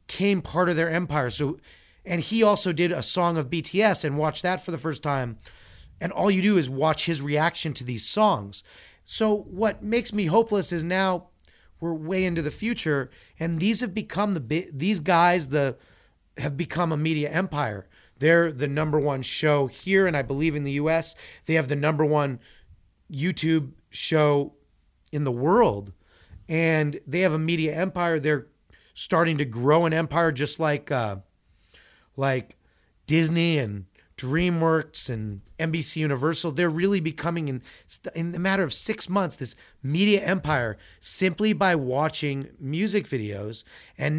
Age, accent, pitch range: 30-49, American, 135-175 Hz